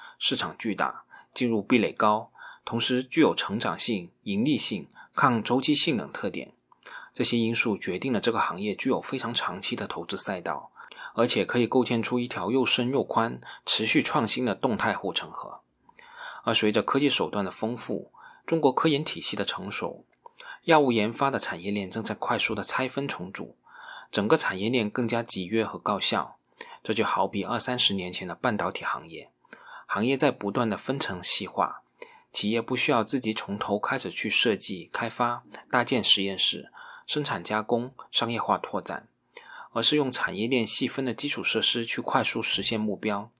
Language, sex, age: Chinese, male, 20-39